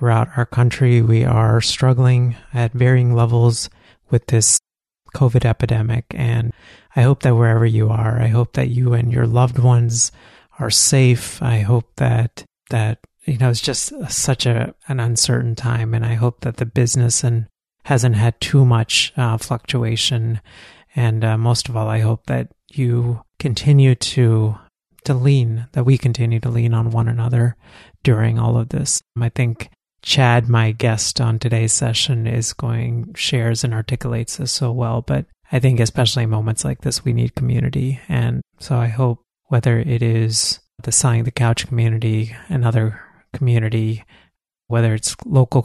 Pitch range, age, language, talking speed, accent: 115-130 Hz, 30-49, English, 165 wpm, American